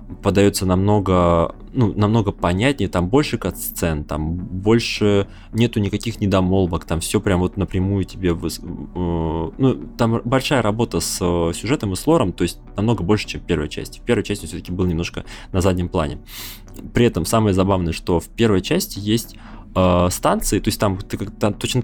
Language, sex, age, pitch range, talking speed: Russian, male, 20-39, 90-115 Hz, 175 wpm